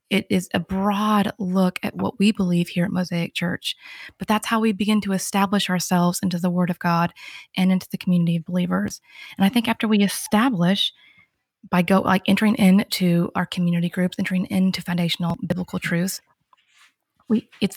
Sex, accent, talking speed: female, American, 180 wpm